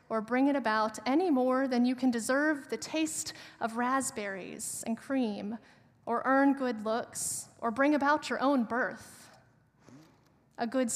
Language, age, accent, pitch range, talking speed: English, 30-49, American, 220-310 Hz, 155 wpm